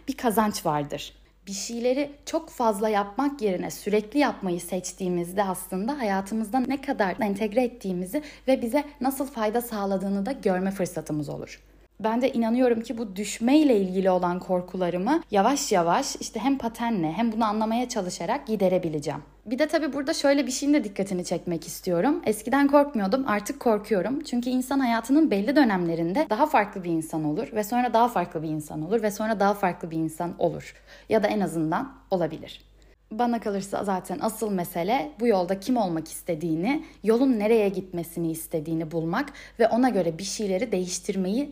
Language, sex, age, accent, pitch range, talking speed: Turkish, female, 10-29, native, 180-255 Hz, 160 wpm